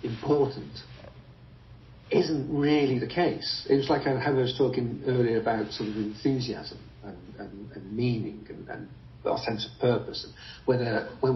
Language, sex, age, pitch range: English, male, 50-69, 110-130 Hz